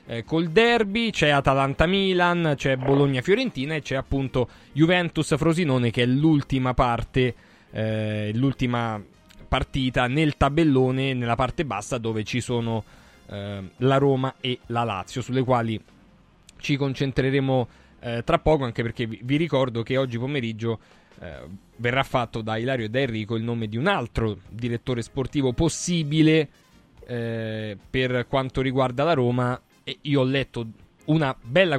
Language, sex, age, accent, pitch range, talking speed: Italian, male, 20-39, native, 115-145 Hz, 135 wpm